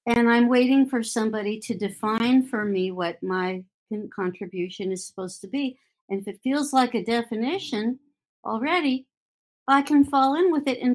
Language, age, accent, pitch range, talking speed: English, 60-79, American, 190-260 Hz, 170 wpm